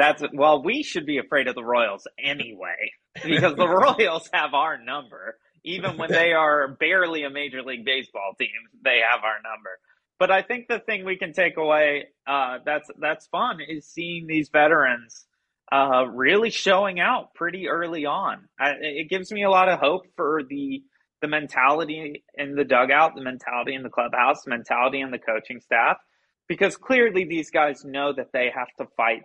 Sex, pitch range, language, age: male, 135-175 Hz, English, 20-39